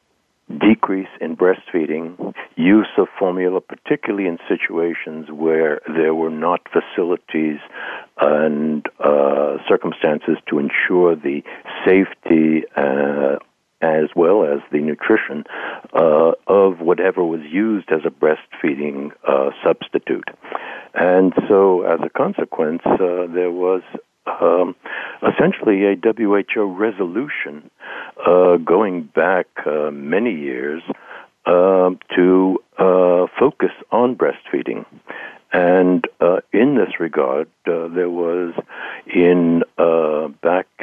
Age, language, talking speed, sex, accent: 60-79, English, 105 wpm, male, American